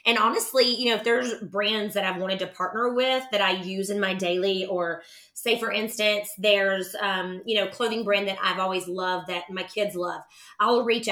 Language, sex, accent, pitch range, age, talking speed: English, female, American, 180-210 Hz, 20-39, 210 wpm